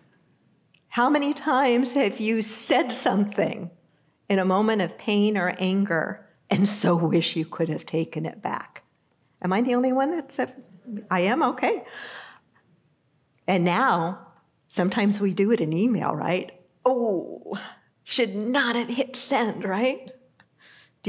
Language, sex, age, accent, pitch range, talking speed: English, female, 50-69, American, 185-230 Hz, 140 wpm